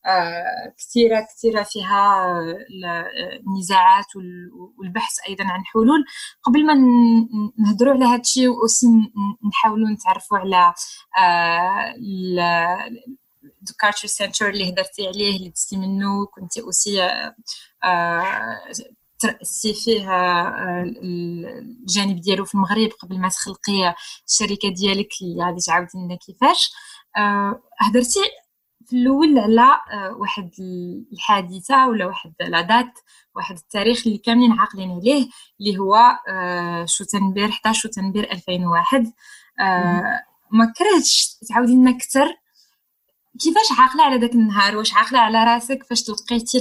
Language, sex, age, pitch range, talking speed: Arabic, female, 20-39, 195-250 Hz, 100 wpm